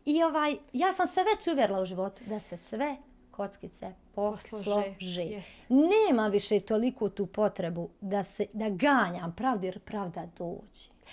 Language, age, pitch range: Croatian, 40-59, 205-285 Hz